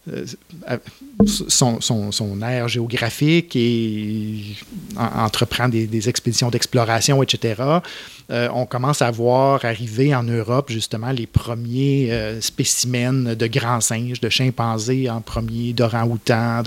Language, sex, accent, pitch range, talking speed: French, male, Canadian, 120-140 Hz, 125 wpm